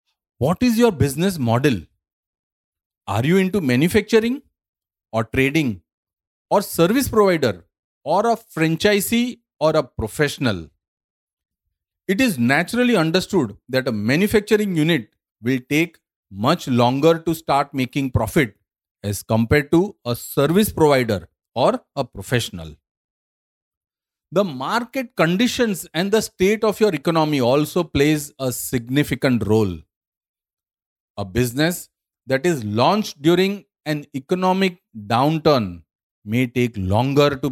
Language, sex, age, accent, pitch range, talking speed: English, male, 40-59, Indian, 110-170 Hz, 115 wpm